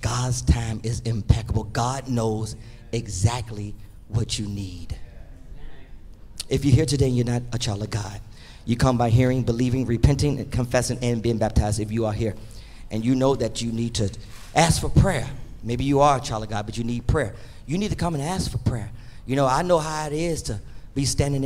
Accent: American